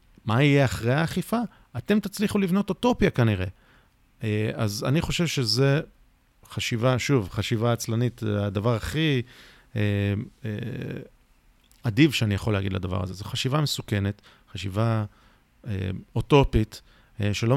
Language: Hebrew